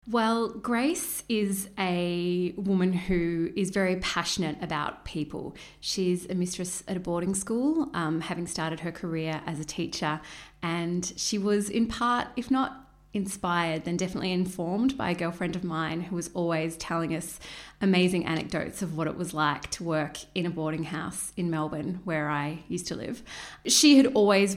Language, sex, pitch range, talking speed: English, female, 165-195 Hz, 170 wpm